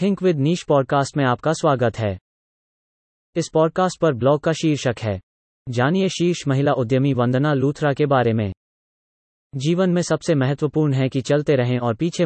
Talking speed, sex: 165 wpm, male